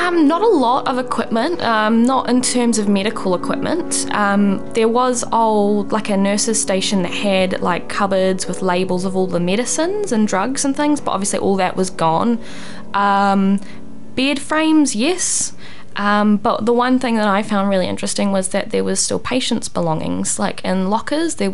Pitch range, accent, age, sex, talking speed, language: 180-220 Hz, Australian, 10-29, female, 185 wpm, English